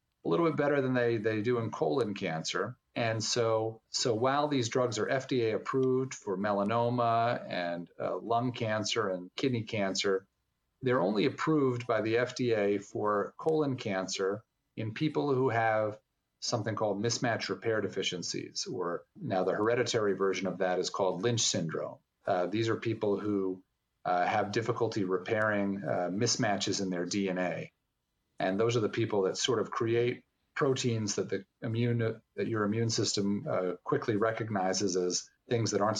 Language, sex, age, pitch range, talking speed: English, male, 40-59, 100-120 Hz, 160 wpm